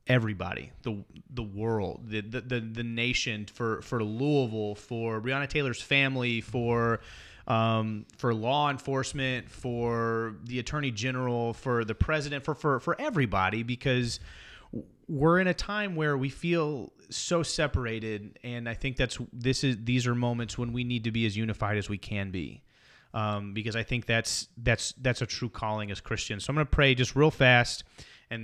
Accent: American